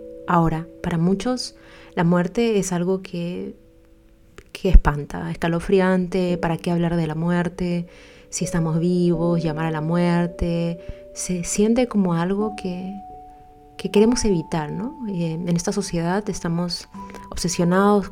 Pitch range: 165-200 Hz